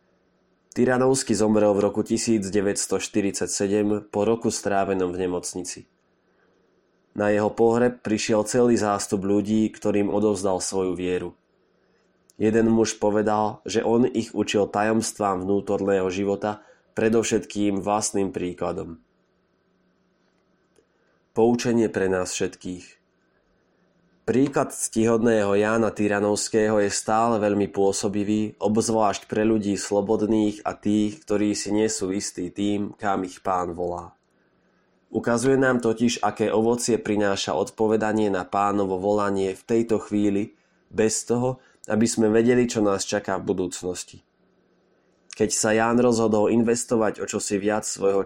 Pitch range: 100-110 Hz